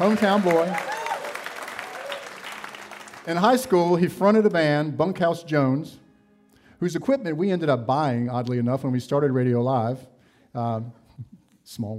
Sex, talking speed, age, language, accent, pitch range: male, 130 wpm, 50-69, English, American, 120-160 Hz